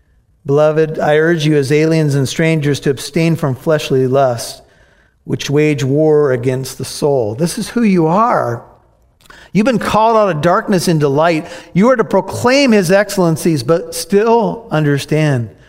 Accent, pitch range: American, 145-200 Hz